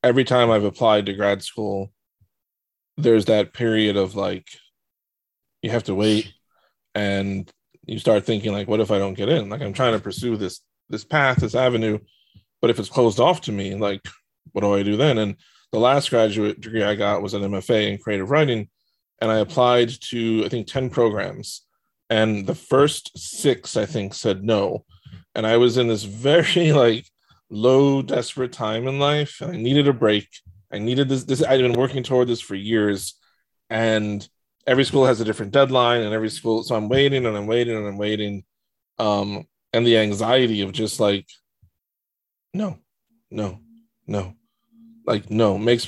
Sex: male